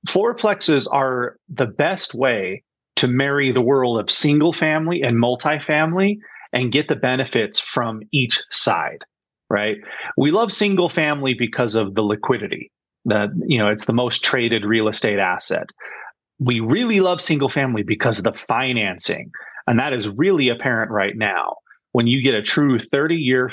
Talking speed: 160 wpm